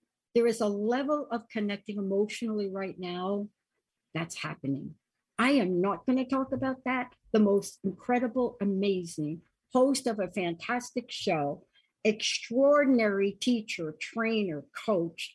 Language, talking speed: English, 125 wpm